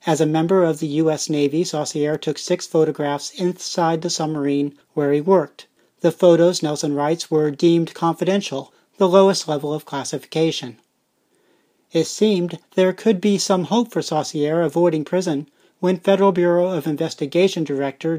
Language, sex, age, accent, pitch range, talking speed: English, male, 40-59, American, 150-185 Hz, 150 wpm